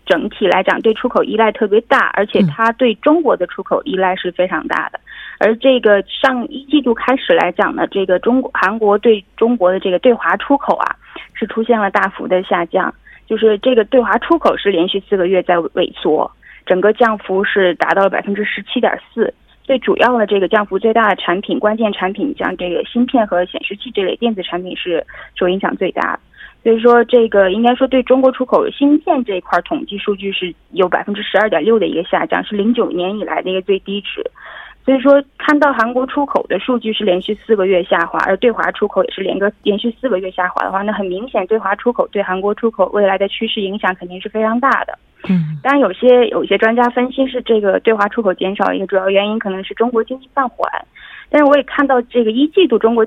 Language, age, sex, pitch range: Korean, 20-39, female, 195-255 Hz